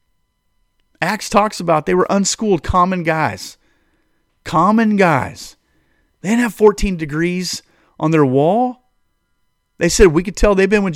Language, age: English, 30-49